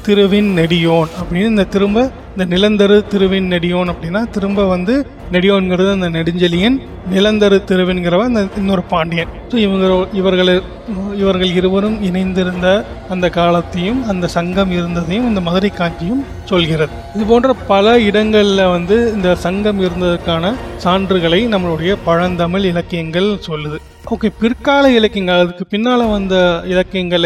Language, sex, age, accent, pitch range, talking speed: Tamil, male, 30-49, native, 170-200 Hz, 115 wpm